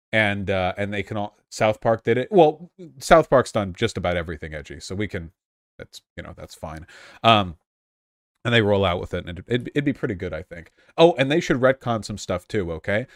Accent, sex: American, male